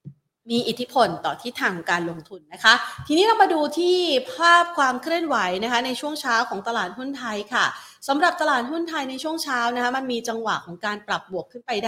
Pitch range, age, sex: 200-255 Hz, 30-49, female